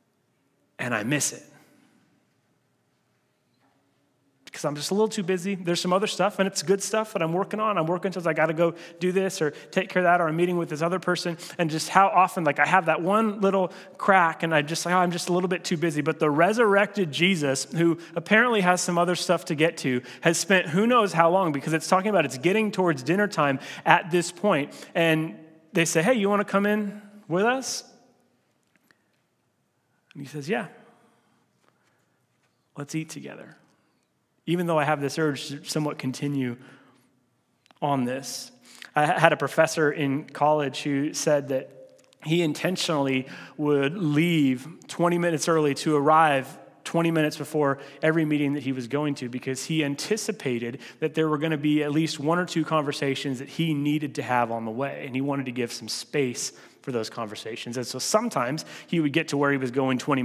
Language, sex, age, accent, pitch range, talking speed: English, male, 30-49, American, 140-180 Hz, 200 wpm